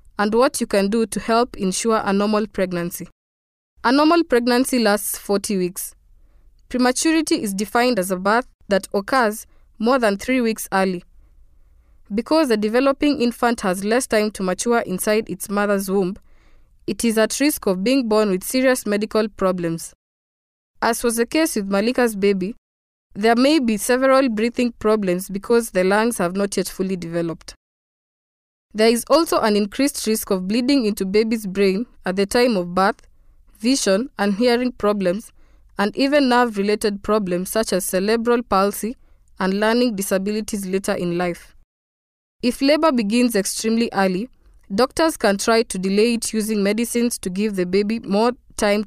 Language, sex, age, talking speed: English, female, 20-39, 155 wpm